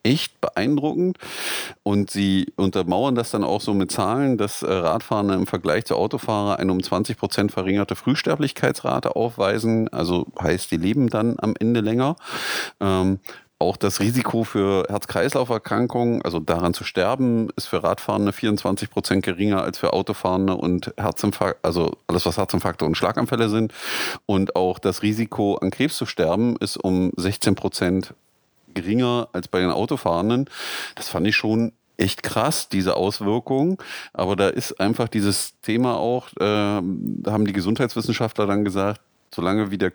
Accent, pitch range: German, 95-115 Hz